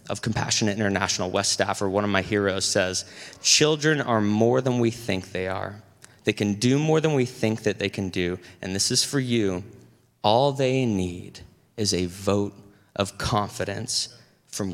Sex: male